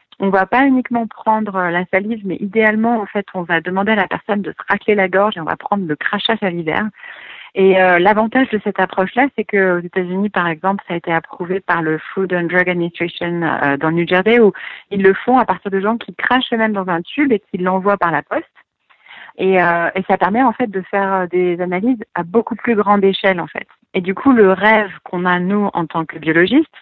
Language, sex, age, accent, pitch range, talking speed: French, female, 40-59, French, 180-220 Hz, 240 wpm